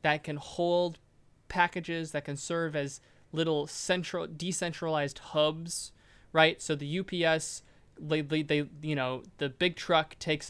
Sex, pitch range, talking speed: male, 140-160 Hz, 135 wpm